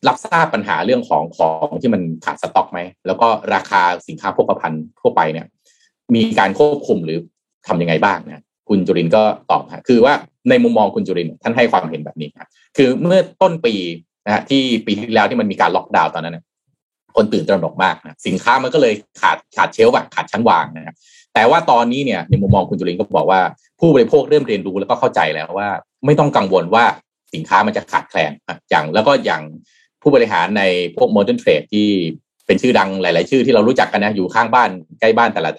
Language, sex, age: Thai, male, 20-39